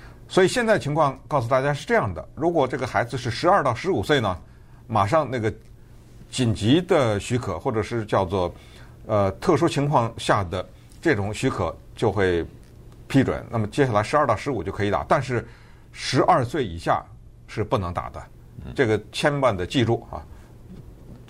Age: 50-69